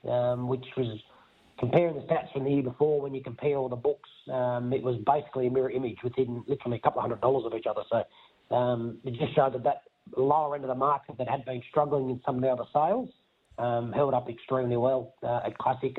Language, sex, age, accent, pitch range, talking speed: English, male, 30-49, Australian, 130-155 Hz, 235 wpm